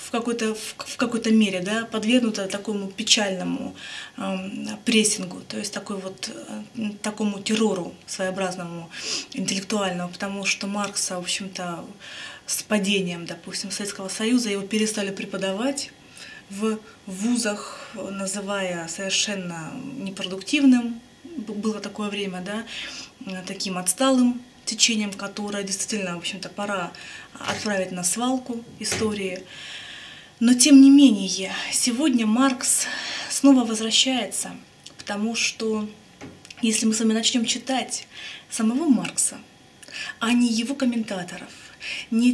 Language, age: Russian, 20-39